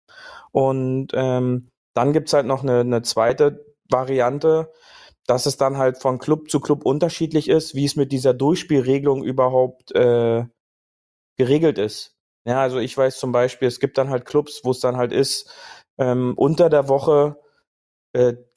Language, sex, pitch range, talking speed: German, male, 125-150 Hz, 165 wpm